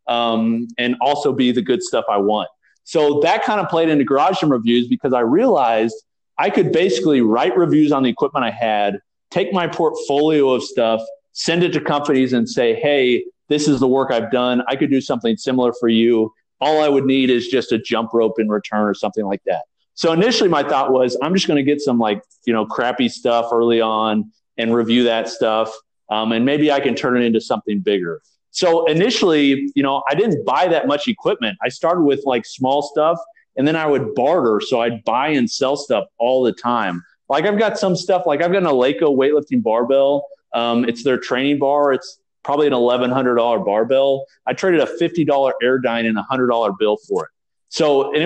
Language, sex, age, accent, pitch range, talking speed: English, male, 30-49, American, 115-150 Hz, 210 wpm